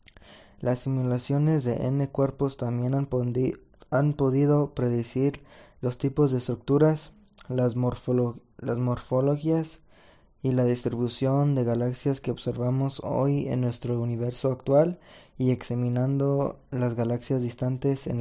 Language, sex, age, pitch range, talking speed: Spanish, male, 20-39, 125-140 Hz, 115 wpm